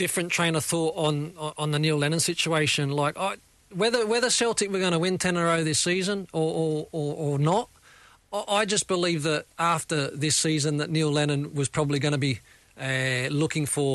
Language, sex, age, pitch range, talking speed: English, male, 40-59, 145-175 Hz, 200 wpm